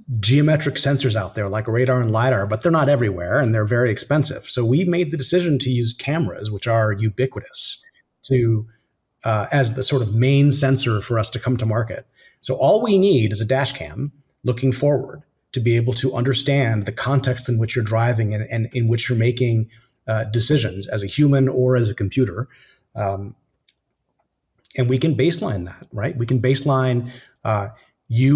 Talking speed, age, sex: 185 wpm, 30-49, male